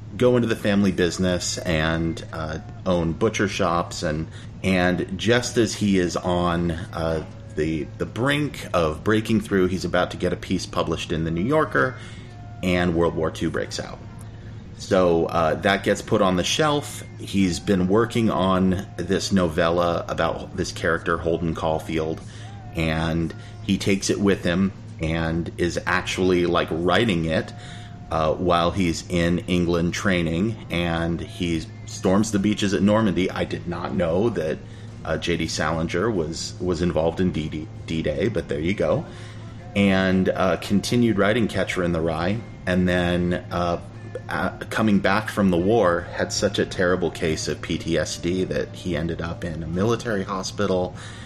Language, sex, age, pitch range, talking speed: English, male, 30-49, 85-110 Hz, 155 wpm